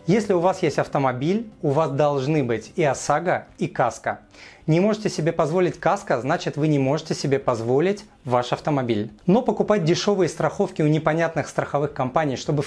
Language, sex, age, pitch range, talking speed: Russian, male, 30-49, 140-195 Hz, 165 wpm